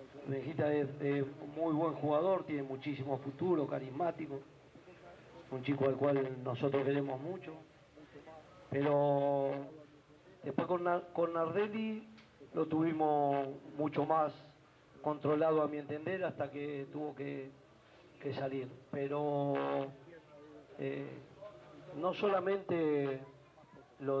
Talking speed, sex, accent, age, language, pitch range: 100 wpm, male, Argentinian, 40-59, Spanish, 140-165 Hz